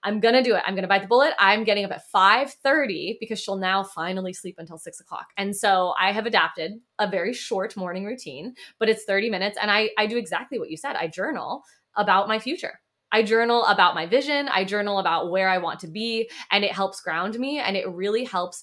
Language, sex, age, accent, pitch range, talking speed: English, female, 20-39, American, 180-225 Hz, 235 wpm